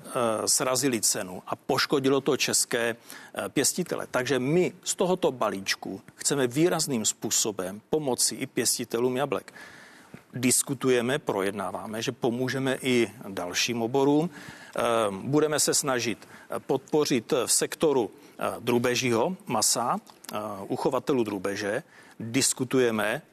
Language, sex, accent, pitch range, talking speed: Czech, male, native, 110-145 Hz, 95 wpm